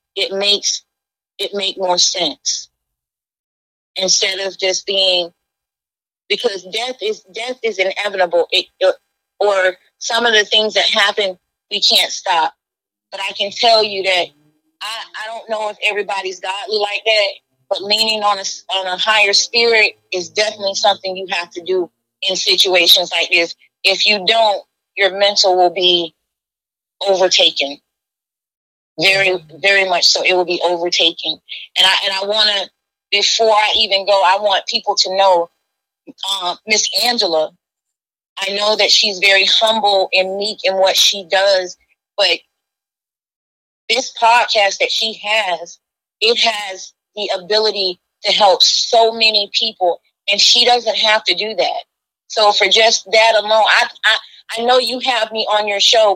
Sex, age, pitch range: female, 30-49, 185-215 Hz